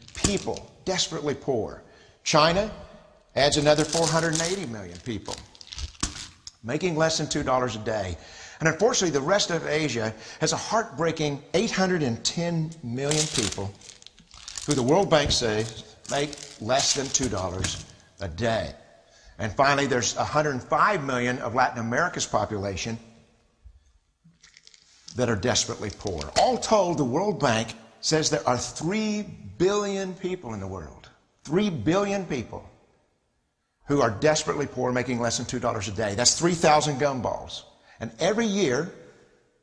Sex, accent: male, American